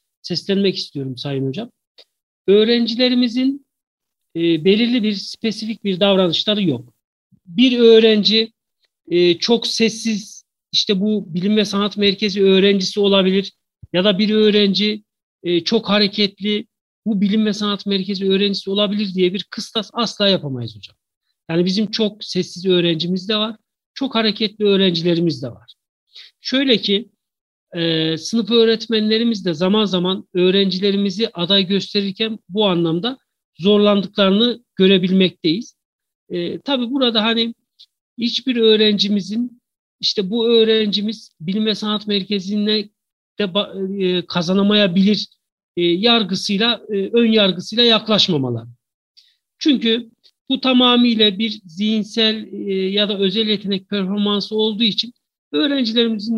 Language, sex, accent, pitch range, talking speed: Turkish, male, native, 190-225 Hz, 115 wpm